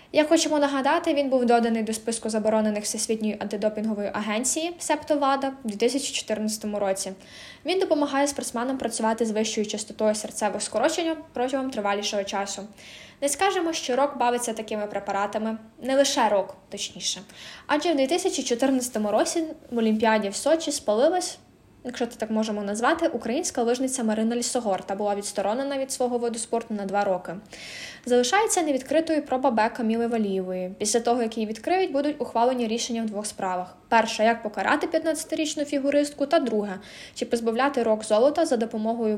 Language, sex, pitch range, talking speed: Ukrainian, female, 215-280 Hz, 145 wpm